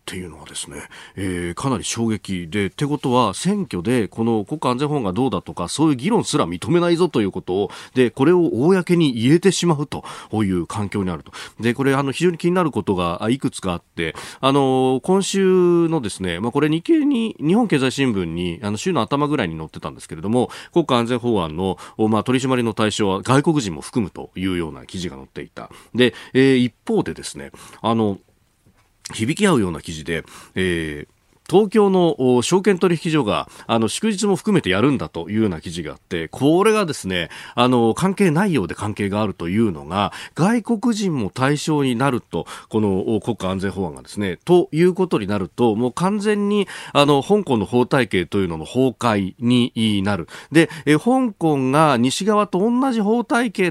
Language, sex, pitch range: Japanese, male, 100-170 Hz